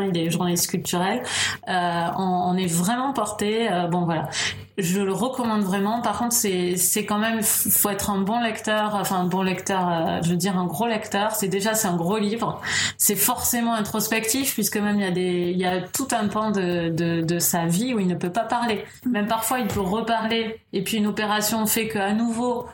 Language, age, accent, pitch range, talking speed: French, 20-39, French, 180-220 Hz, 215 wpm